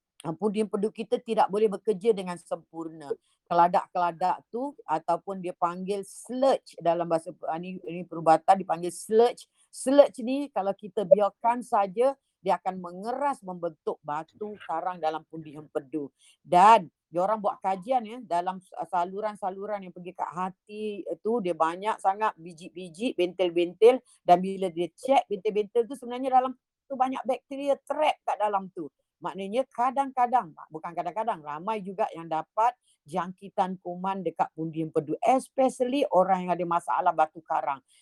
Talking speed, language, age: 140 wpm, Indonesian, 40-59